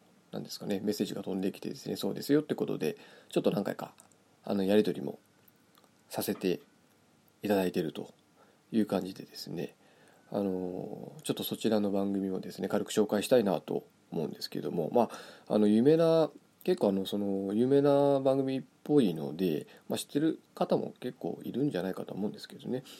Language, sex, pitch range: Japanese, male, 100-145 Hz